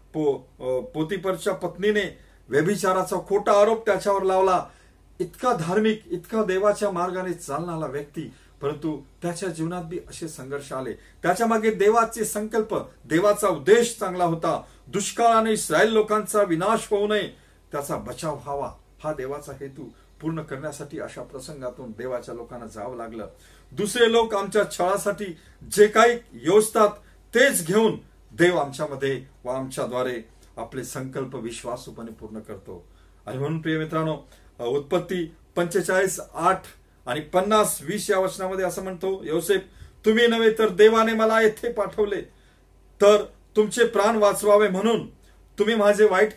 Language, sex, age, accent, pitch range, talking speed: Marathi, male, 50-69, native, 140-205 Hz, 80 wpm